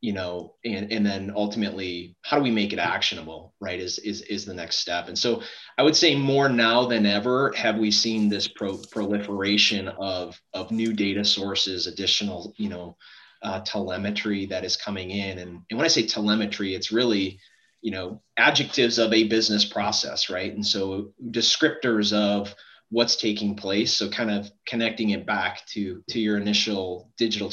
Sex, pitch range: male, 100-110 Hz